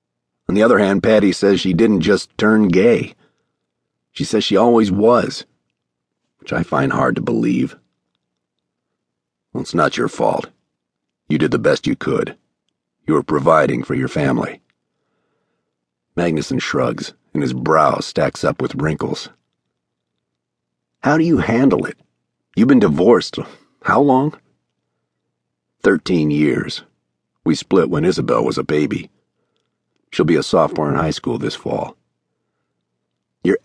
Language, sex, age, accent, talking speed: English, male, 50-69, American, 135 wpm